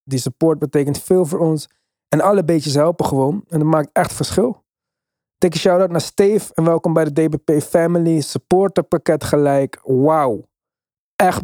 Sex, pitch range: male, 135-170 Hz